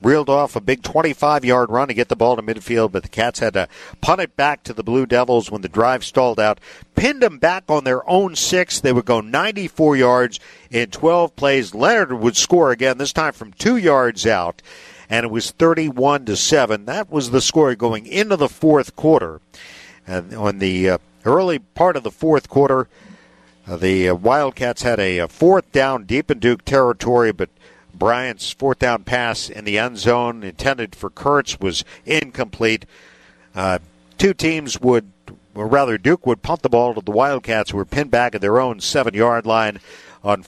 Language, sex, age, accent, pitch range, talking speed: English, male, 50-69, American, 105-145 Hz, 185 wpm